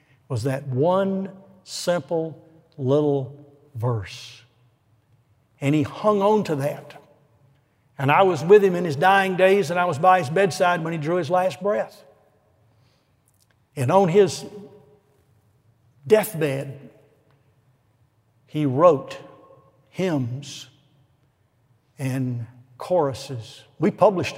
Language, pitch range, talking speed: English, 130-185 Hz, 110 wpm